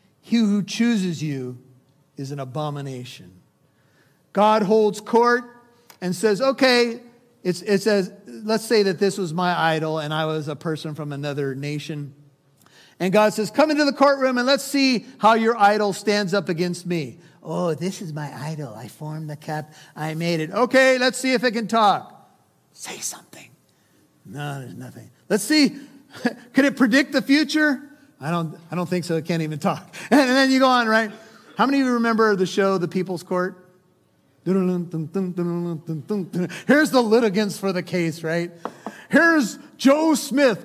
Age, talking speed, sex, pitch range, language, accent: 50-69, 170 wpm, male, 170-260 Hz, English, American